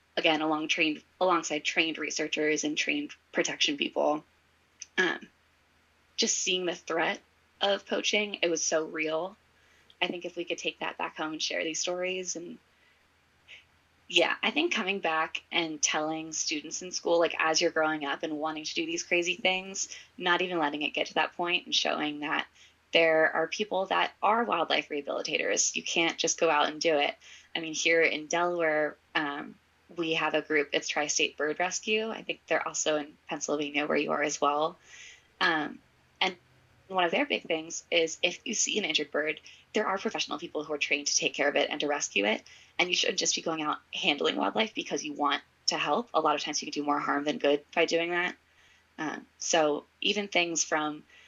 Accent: American